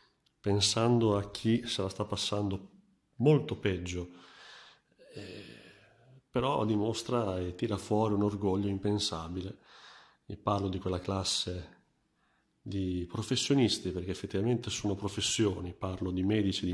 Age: 40-59